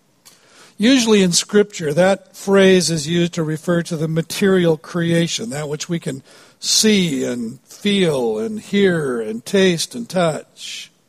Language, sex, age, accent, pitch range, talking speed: English, male, 60-79, American, 170-210 Hz, 140 wpm